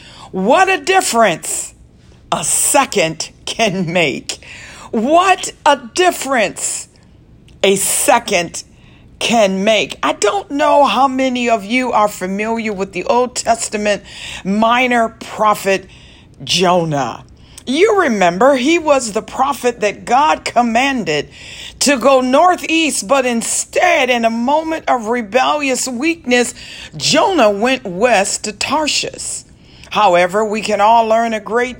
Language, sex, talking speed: English, female, 115 wpm